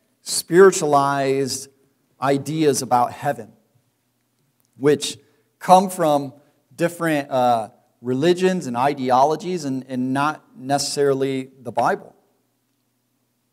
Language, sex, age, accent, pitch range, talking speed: English, male, 40-59, American, 120-145 Hz, 80 wpm